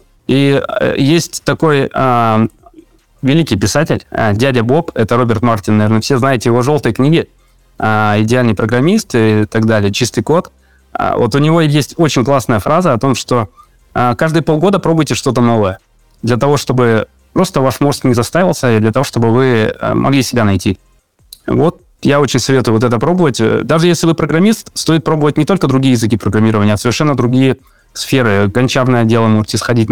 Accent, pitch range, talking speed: native, 110-145 Hz, 160 wpm